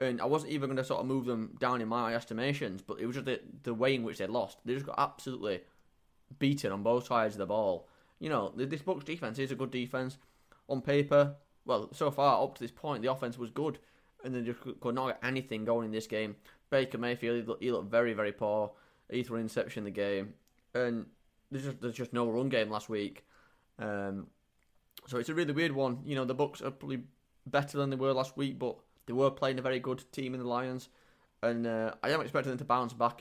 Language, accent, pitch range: English, British, 115-130 Hz